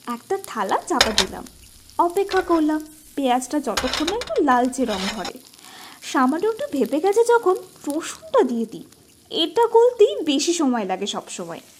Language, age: Bengali, 20-39